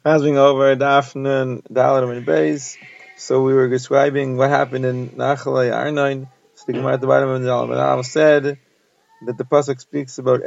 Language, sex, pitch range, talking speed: English, male, 130-150 Hz, 165 wpm